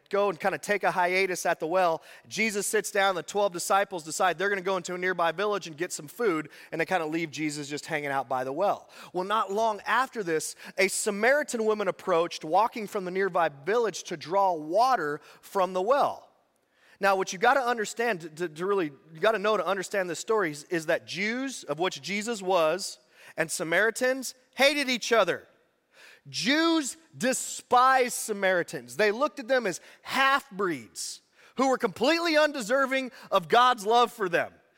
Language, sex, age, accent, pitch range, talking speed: English, male, 30-49, American, 180-260 Hz, 190 wpm